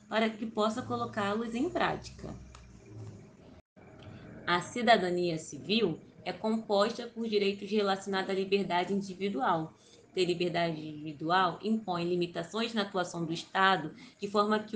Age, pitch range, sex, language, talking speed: 20-39, 180-230 Hz, female, Portuguese, 120 wpm